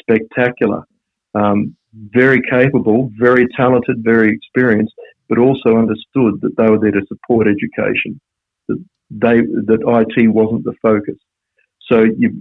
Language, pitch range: English, 110-130 Hz